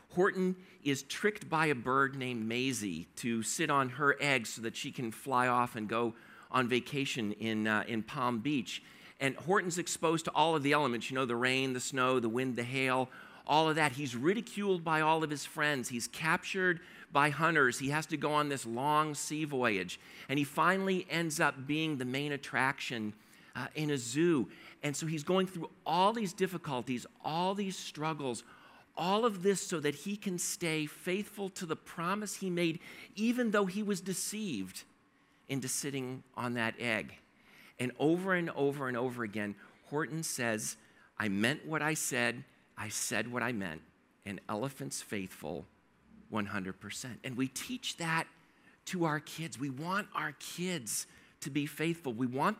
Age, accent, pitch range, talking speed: 50-69, American, 125-180 Hz, 180 wpm